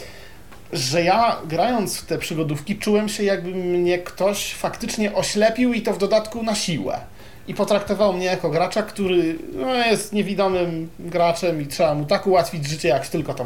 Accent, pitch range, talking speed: native, 140-195 Hz, 165 wpm